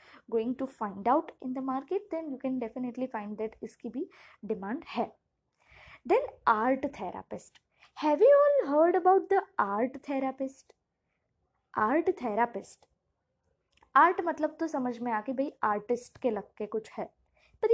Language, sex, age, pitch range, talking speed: Hindi, female, 20-39, 230-350 Hz, 130 wpm